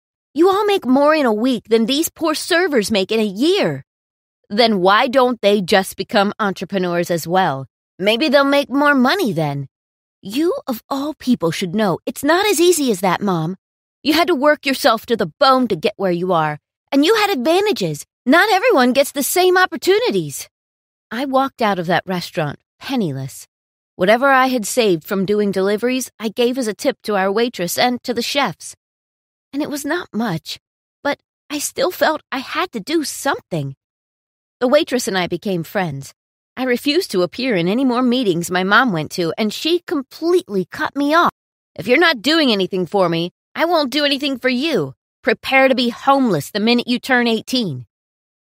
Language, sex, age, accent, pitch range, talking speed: English, female, 30-49, American, 185-280 Hz, 190 wpm